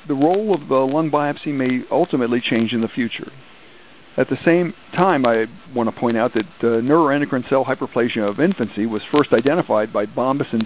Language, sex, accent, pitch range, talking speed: English, male, American, 115-140 Hz, 185 wpm